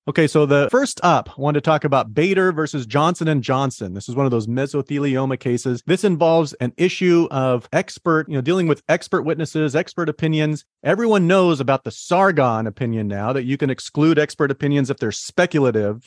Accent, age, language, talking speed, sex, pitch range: American, 40-59, English, 190 wpm, male, 125-155 Hz